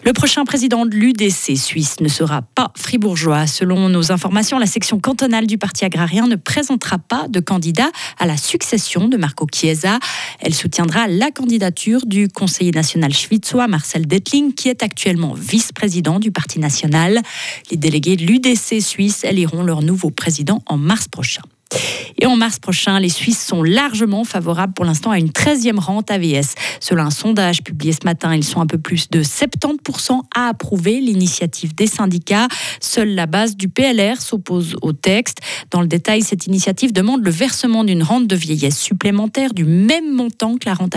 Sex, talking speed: female, 175 wpm